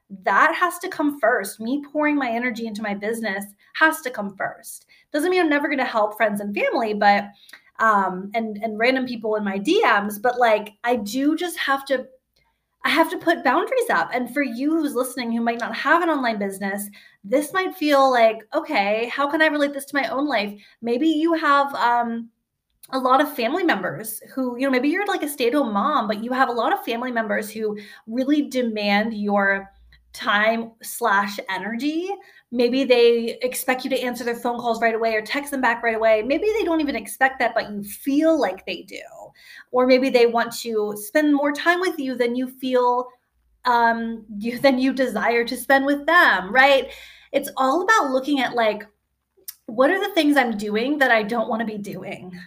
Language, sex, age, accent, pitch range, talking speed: English, female, 20-39, American, 225-280 Hz, 205 wpm